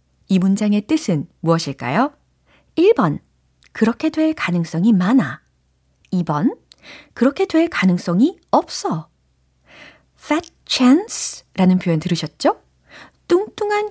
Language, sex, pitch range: Korean, female, 165-265 Hz